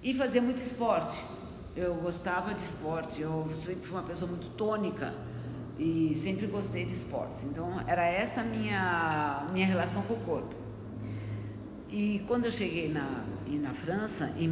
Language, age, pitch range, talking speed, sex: Portuguese, 50-69, 145-210 Hz, 155 wpm, female